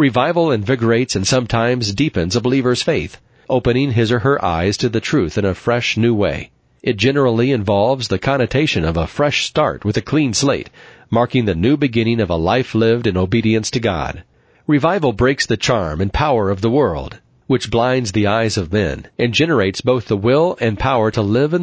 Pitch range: 105-130 Hz